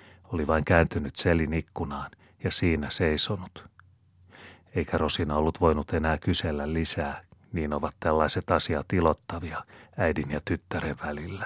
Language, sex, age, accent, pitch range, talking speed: Finnish, male, 30-49, native, 75-95 Hz, 125 wpm